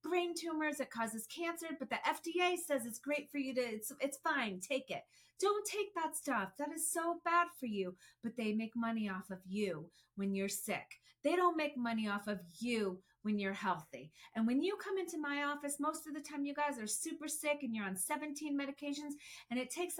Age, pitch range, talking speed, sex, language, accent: 30-49, 195-280 Hz, 220 wpm, female, English, American